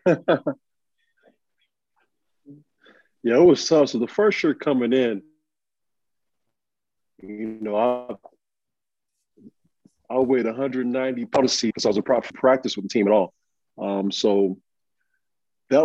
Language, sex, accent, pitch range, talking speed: English, male, American, 105-125 Hz, 125 wpm